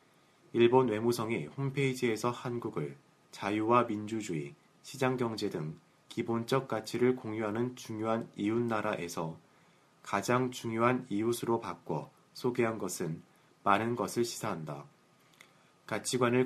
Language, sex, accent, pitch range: Korean, male, native, 105-125 Hz